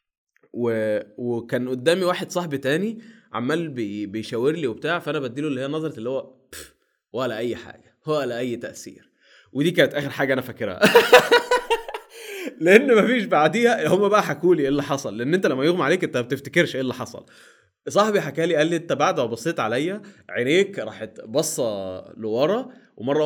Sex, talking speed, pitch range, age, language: male, 175 wpm, 130-190 Hz, 20-39, Arabic